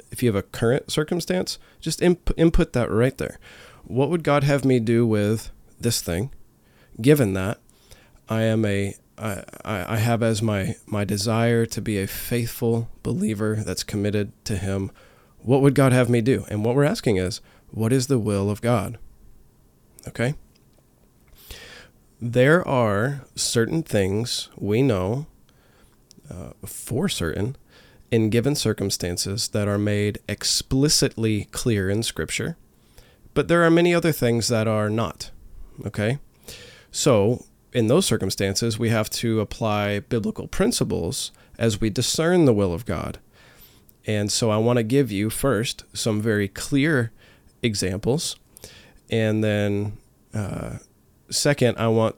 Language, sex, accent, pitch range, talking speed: English, male, American, 105-125 Hz, 145 wpm